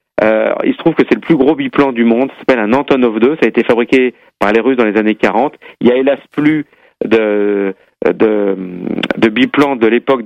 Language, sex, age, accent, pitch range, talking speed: French, male, 40-59, French, 115-150 Hz, 220 wpm